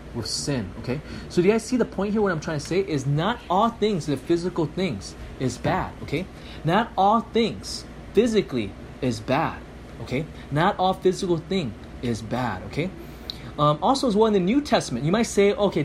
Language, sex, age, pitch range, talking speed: English, male, 30-49, 135-200 Hz, 195 wpm